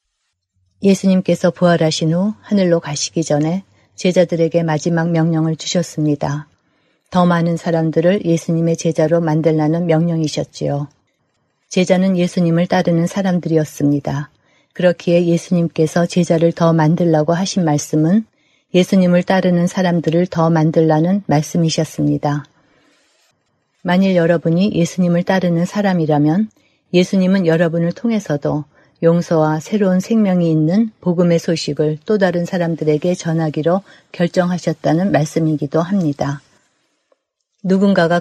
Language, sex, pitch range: Korean, female, 155-180 Hz